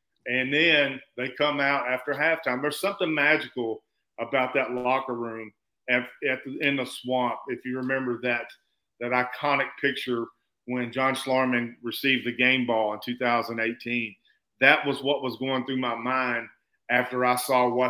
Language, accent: English, American